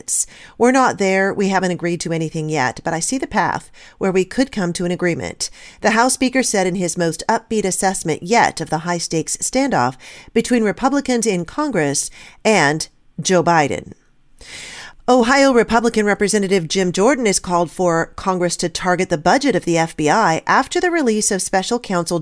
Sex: female